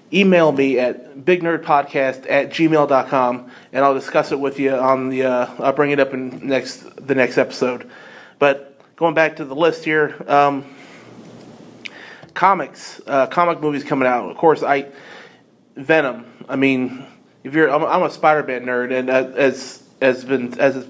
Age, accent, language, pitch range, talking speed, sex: 30-49, American, English, 130-150 Hz, 165 wpm, male